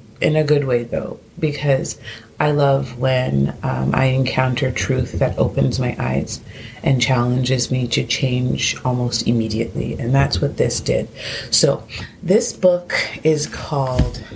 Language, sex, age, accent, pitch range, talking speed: English, female, 30-49, American, 120-155 Hz, 140 wpm